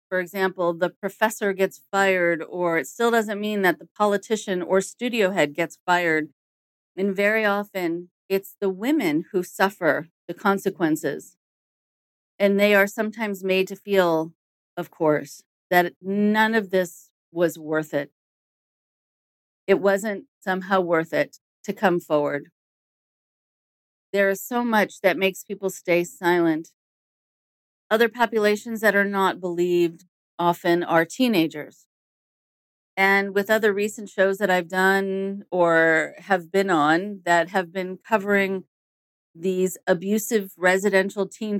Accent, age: American, 40-59